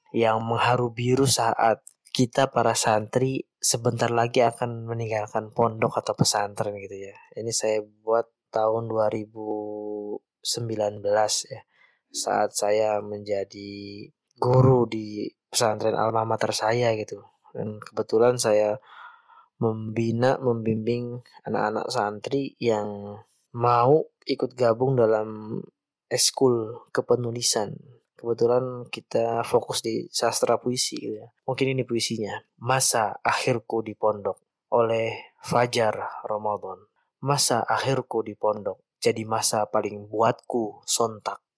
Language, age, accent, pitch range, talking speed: Indonesian, 20-39, native, 110-125 Hz, 100 wpm